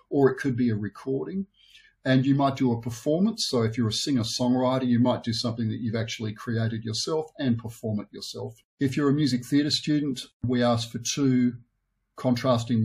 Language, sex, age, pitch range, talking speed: English, male, 50-69, 115-135 Hz, 190 wpm